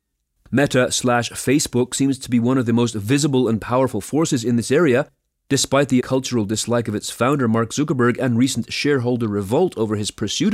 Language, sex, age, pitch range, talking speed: English, male, 30-49, 115-145 Hz, 190 wpm